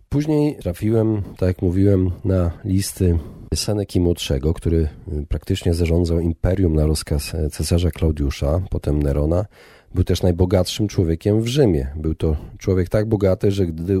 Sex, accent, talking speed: male, native, 135 wpm